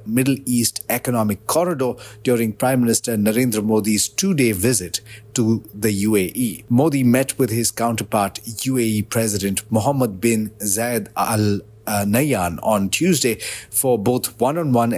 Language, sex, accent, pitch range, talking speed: English, male, Indian, 105-130 Hz, 120 wpm